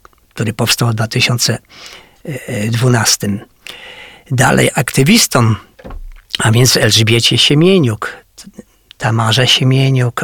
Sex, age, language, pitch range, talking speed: male, 50-69, Polish, 120-140 Hz, 70 wpm